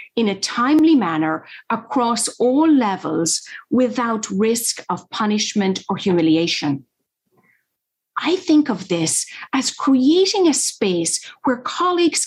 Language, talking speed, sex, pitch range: English, 115 wpm, female, 190-280 Hz